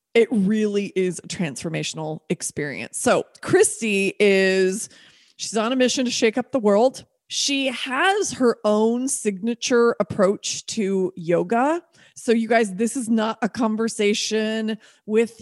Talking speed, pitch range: 135 wpm, 200-245 Hz